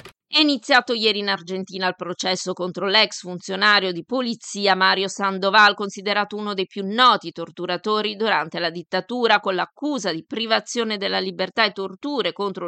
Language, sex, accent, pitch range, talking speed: Italian, female, native, 180-210 Hz, 150 wpm